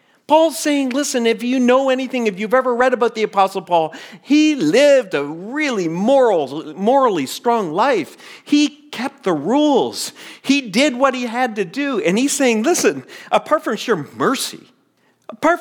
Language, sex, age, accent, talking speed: English, male, 40-59, American, 165 wpm